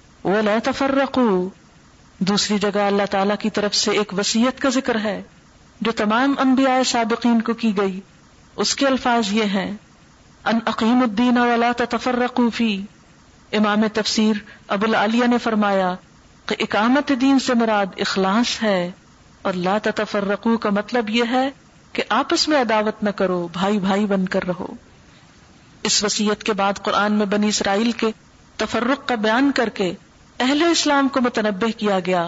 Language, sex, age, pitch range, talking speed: Urdu, female, 40-59, 205-245 Hz, 150 wpm